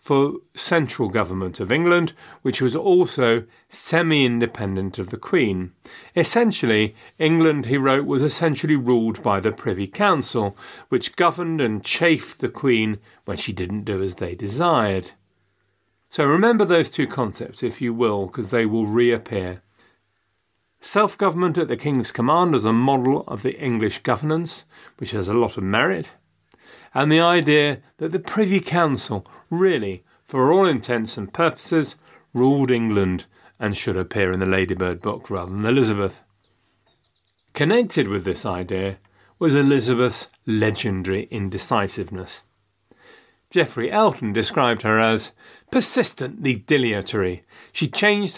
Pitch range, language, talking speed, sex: 105-160 Hz, English, 135 wpm, male